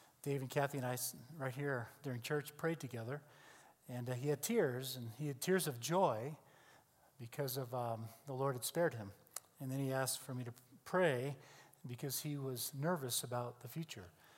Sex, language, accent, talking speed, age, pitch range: male, English, American, 190 wpm, 40-59, 125-155 Hz